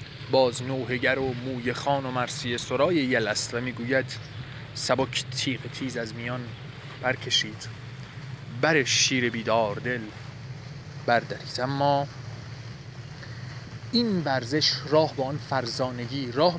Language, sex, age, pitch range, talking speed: Persian, male, 30-49, 125-145 Hz, 110 wpm